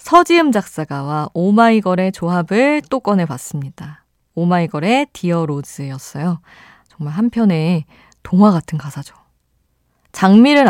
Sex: female